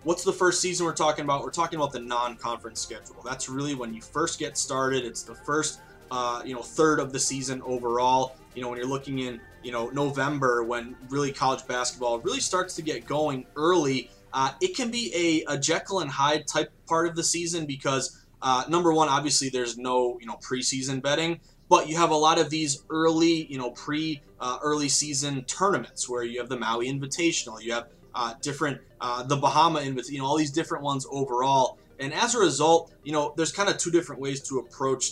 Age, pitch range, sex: 20-39, 125-155 Hz, male